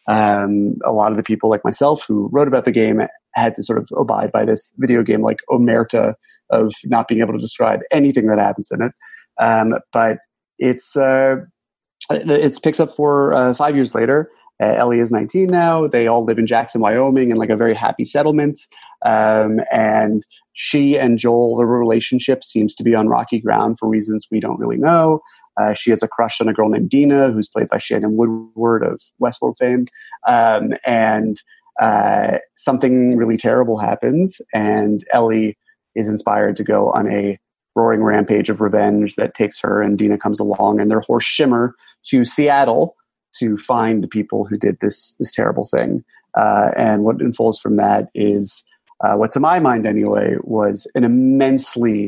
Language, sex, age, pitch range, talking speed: English, male, 30-49, 110-135 Hz, 185 wpm